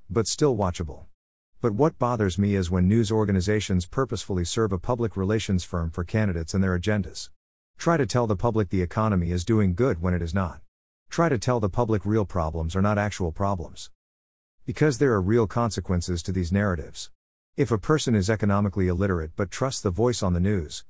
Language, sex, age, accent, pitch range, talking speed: English, male, 50-69, American, 90-110 Hz, 195 wpm